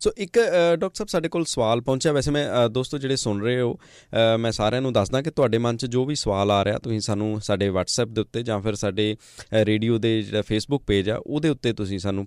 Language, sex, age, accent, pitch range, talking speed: English, male, 20-39, Indian, 105-125 Hz, 230 wpm